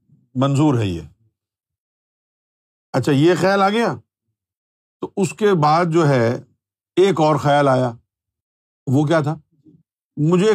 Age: 50-69